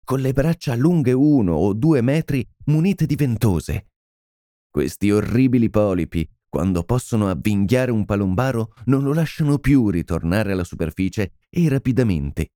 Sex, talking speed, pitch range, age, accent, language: male, 135 wpm, 90-130 Hz, 30-49, native, Italian